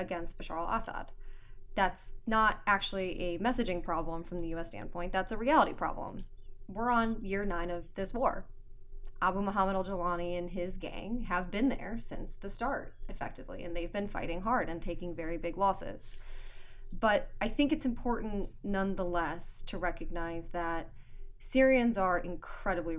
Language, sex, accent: English, female, American